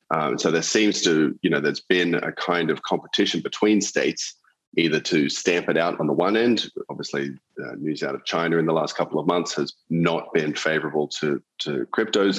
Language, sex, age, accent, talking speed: English, male, 30-49, Australian, 210 wpm